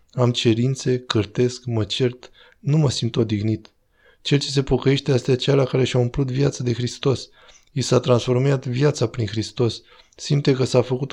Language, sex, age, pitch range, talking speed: Romanian, male, 20-39, 115-135 Hz, 165 wpm